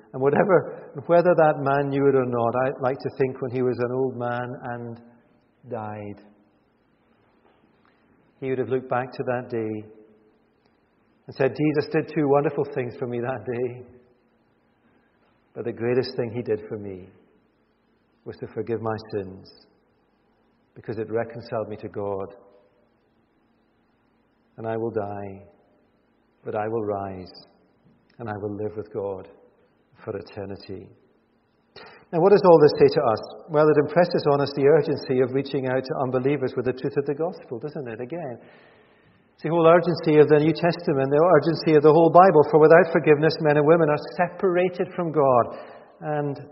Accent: British